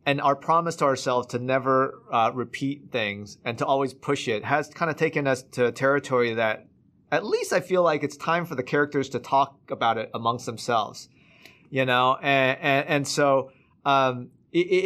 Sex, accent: male, American